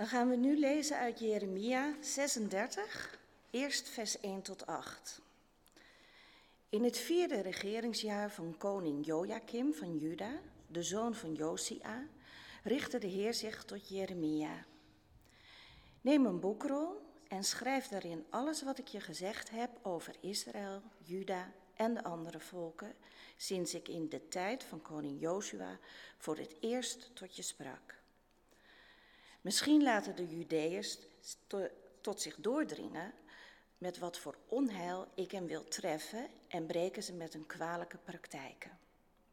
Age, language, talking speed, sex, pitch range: 40-59, English, 135 wpm, female, 175-240 Hz